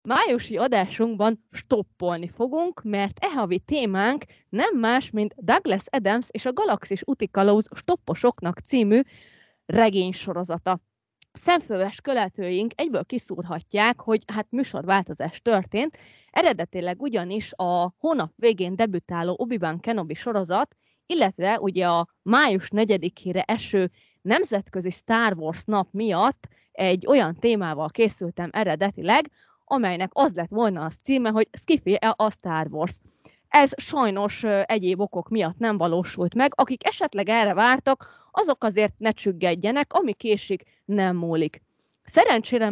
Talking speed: 120 wpm